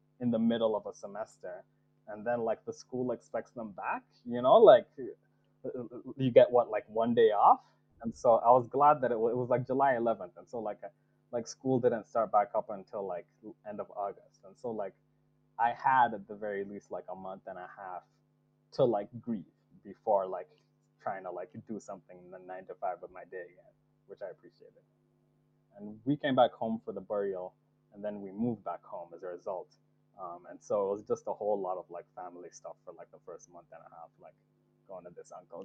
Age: 20-39